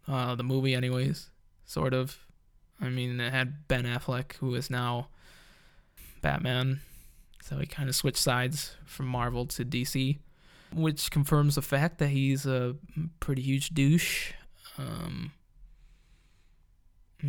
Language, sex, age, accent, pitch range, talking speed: English, male, 20-39, American, 130-160 Hz, 130 wpm